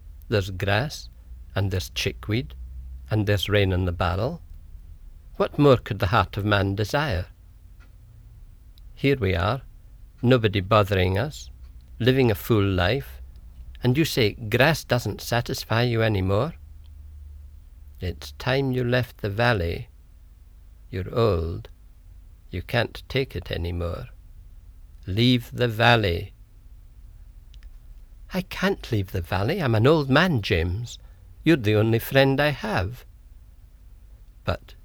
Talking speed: 125 wpm